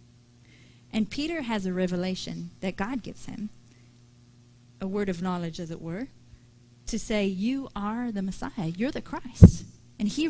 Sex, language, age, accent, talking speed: female, English, 30-49, American, 155 wpm